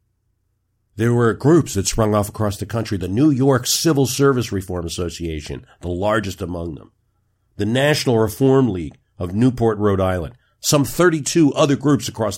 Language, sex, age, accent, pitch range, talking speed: English, male, 50-69, American, 90-115 Hz, 160 wpm